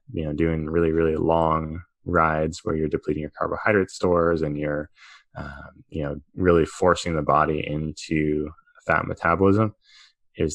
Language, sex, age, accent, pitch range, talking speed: English, male, 20-39, American, 75-90 Hz, 150 wpm